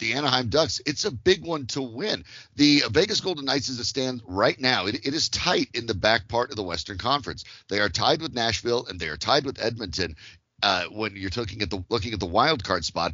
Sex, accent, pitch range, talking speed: male, American, 95-125 Hz, 240 wpm